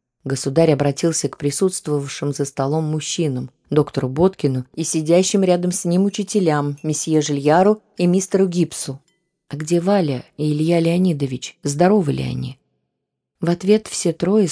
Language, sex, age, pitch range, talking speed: Russian, female, 20-39, 135-175 Hz, 135 wpm